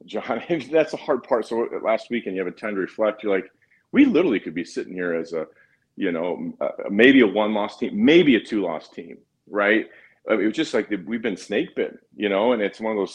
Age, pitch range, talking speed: 40-59, 95-110 Hz, 240 wpm